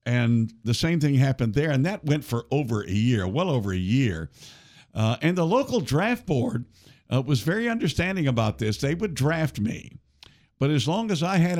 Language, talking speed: English, 200 wpm